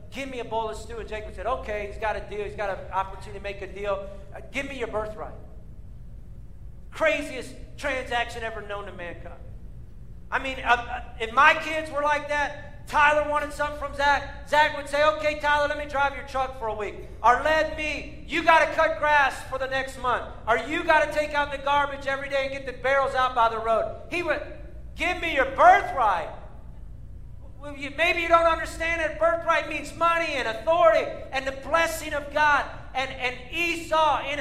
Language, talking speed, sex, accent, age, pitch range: English, 205 wpm, male, American, 40-59, 265-325 Hz